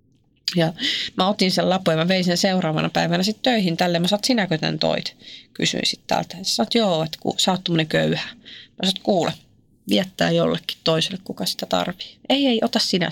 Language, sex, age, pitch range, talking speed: Finnish, female, 30-49, 155-225 Hz, 195 wpm